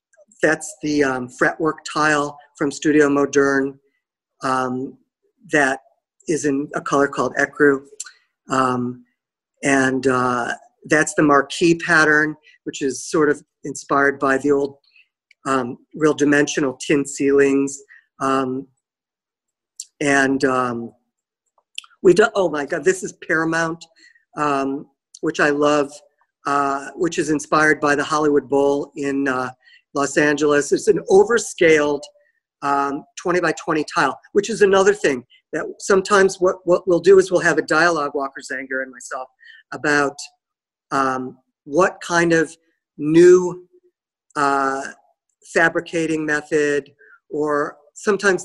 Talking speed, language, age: 125 wpm, English, 50-69